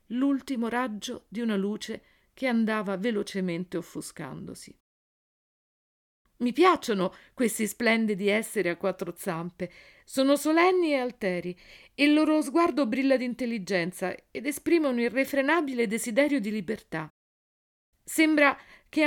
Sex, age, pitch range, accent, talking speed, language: female, 50-69, 185-255 Hz, native, 115 wpm, Italian